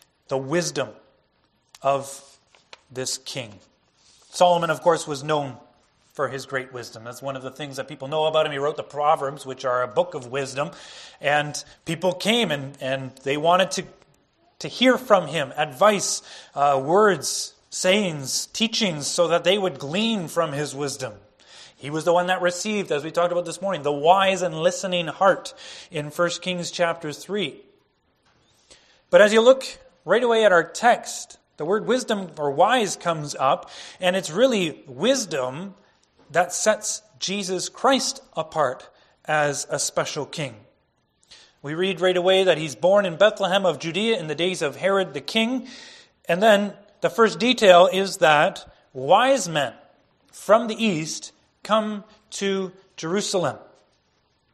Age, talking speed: 30-49, 155 wpm